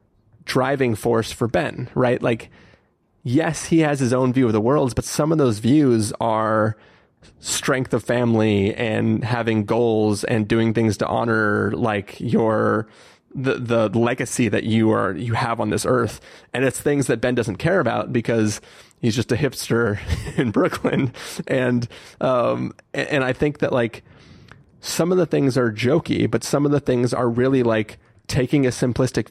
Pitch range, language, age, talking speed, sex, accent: 110-130 Hz, English, 30-49, 170 wpm, male, American